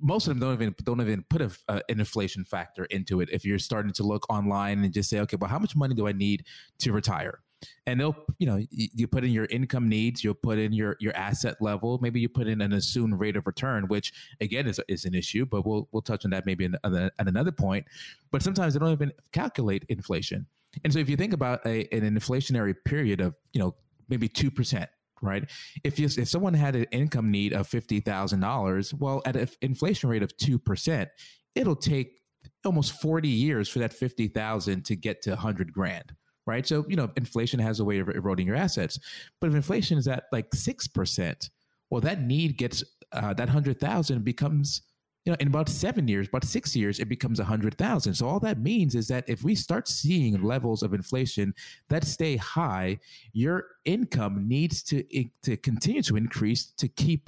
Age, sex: 20-39, male